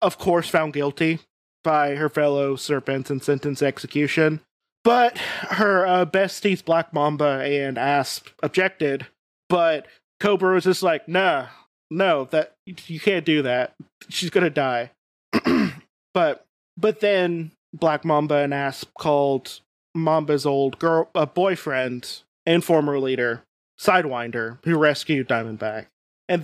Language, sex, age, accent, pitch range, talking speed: English, male, 20-39, American, 140-170 Hz, 130 wpm